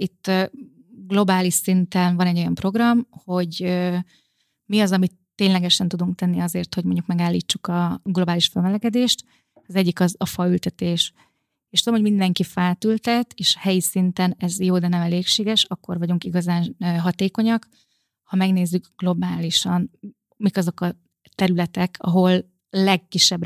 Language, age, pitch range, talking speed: Hungarian, 30-49, 175-200 Hz, 135 wpm